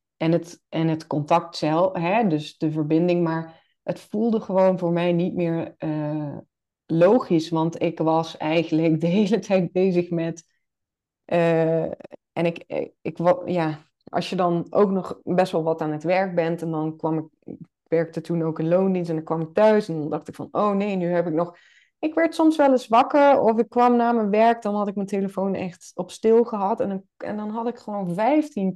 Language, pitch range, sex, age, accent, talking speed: Dutch, 165-215 Hz, female, 20-39, Dutch, 210 wpm